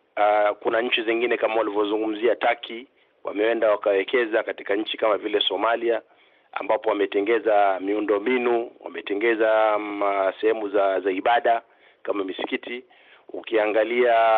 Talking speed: 105 wpm